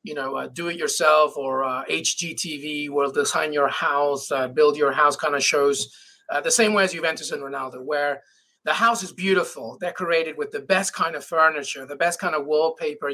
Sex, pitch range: male, 155-205 Hz